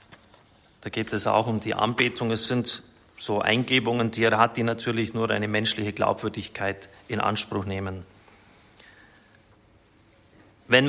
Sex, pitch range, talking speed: male, 110-135 Hz, 130 wpm